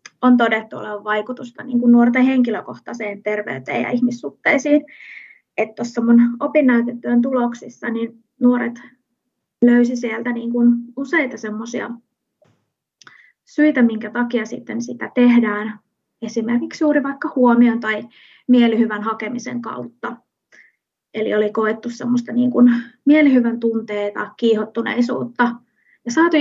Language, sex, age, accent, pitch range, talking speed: Finnish, female, 20-39, native, 220-245 Hz, 100 wpm